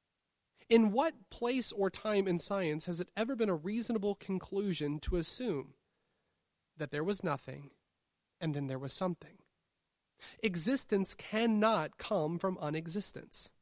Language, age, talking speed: English, 30-49, 130 wpm